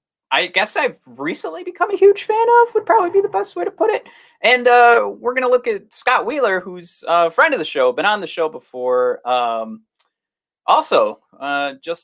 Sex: male